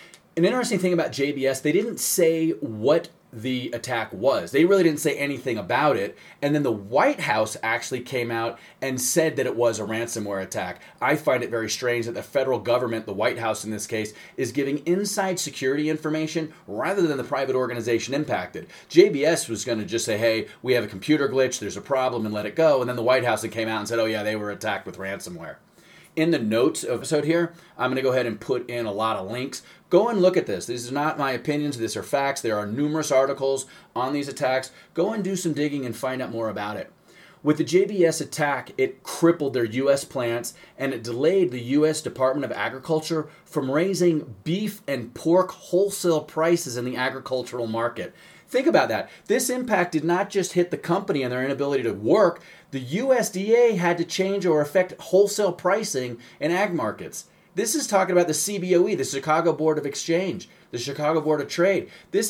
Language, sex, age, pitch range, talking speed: English, male, 30-49, 125-170 Hz, 210 wpm